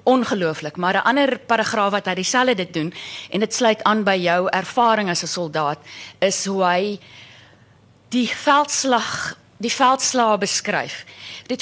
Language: Dutch